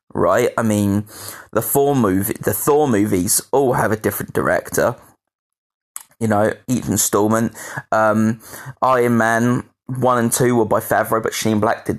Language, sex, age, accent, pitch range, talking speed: English, male, 20-39, British, 105-125 Hz, 155 wpm